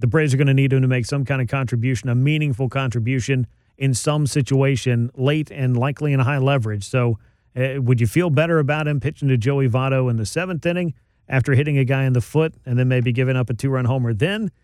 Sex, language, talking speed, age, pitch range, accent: male, English, 240 wpm, 40-59, 120-140 Hz, American